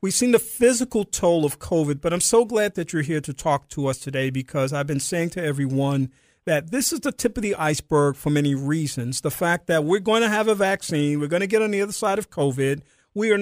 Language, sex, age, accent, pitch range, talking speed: English, male, 50-69, American, 150-205 Hz, 255 wpm